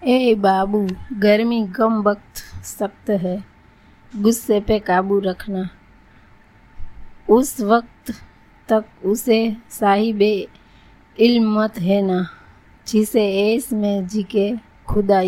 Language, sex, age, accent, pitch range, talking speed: Gujarati, female, 20-39, native, 195-220 Hz, 85 wpm